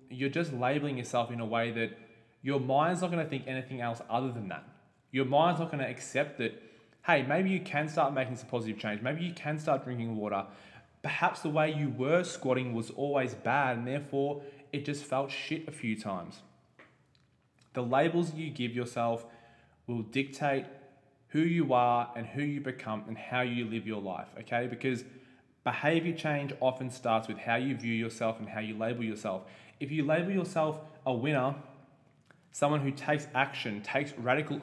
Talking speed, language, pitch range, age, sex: 180 wpm, English, 120-150 Hz, 20-39, male